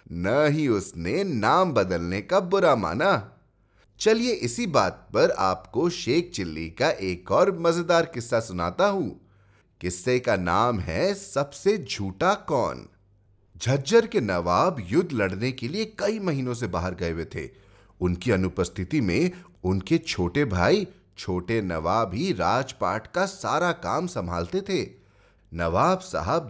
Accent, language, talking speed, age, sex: native, Hindi, 135 wpm, 30-49, male